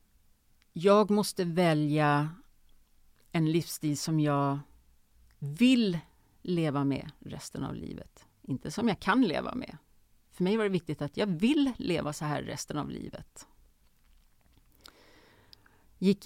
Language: Swedish